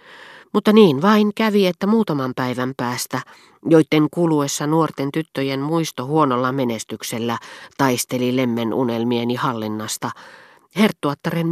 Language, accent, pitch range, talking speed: Finnish, native, 125-165 Hz, 105 wpm